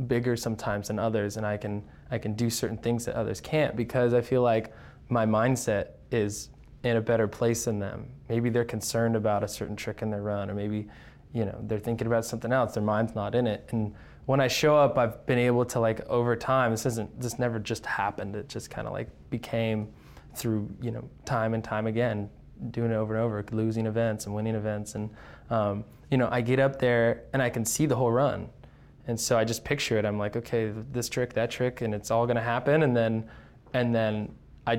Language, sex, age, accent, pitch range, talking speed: English, male, 20-39, American, 105-120 Hz, 230 wpm